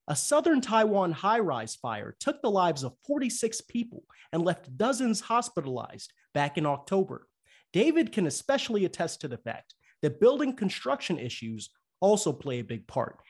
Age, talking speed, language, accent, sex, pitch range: 30-49, 155 wpm, English, American, male, 140-210 Hz